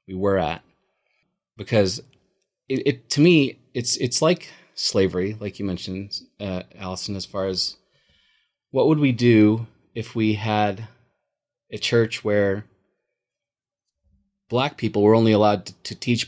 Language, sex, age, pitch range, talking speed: English, male, 30-49, 100-135 Hz, 140 wpm